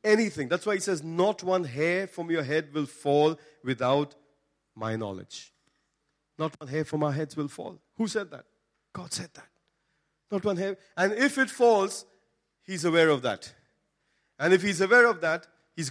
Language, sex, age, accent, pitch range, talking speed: English, male, 40-59, Indian, 130-155 Hz, 180 wpm